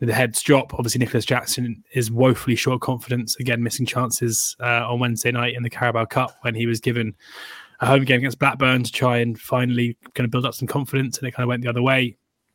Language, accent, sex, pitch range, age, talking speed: English, British, male, 115-130 Hz, 20-39, 230 wpm